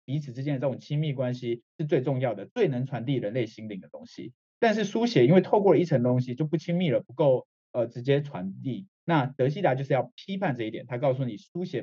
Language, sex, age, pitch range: Chinese, male, 20-39, 125-175 Hz